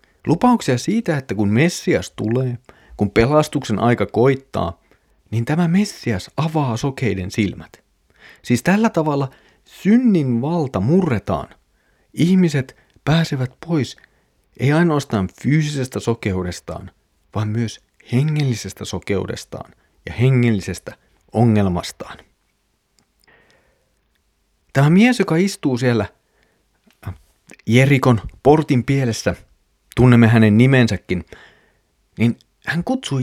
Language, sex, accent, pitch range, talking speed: Finnish, male, native, 105-150 Hz, 90 wpm